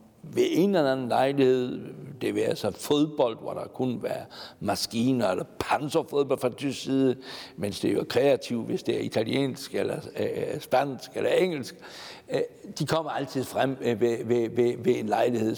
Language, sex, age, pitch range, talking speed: Danish, male, 60-79, 115-145 Hz, 160 wpm